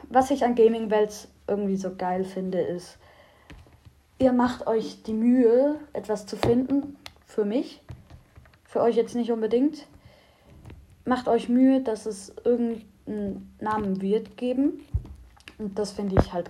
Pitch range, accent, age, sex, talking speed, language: 195-240 Hz, German, 20-39, female, 140 wpm, German